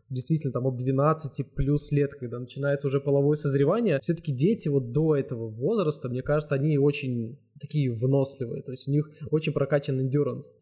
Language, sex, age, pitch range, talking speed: Russian, male, 20-39, 135-155 Hz, 170 wpm